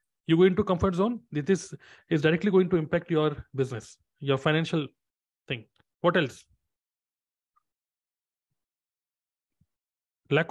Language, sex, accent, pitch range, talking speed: Hindi, male, native, 125-180 Hz, 110 wpm